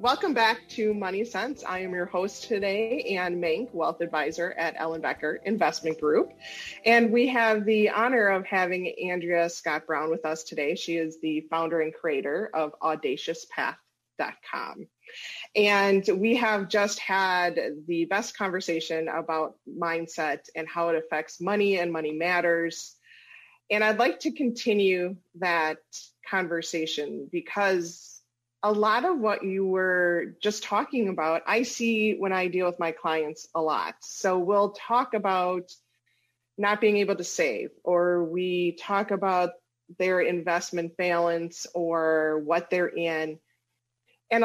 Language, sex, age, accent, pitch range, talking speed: English, female, 30-49, American, 165-205 Hz, 140 wpm